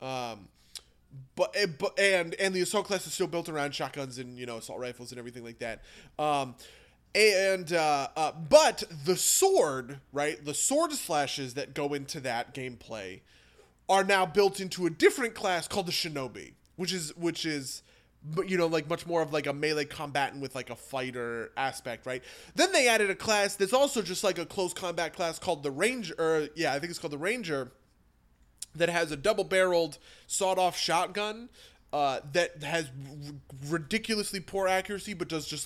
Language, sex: English, male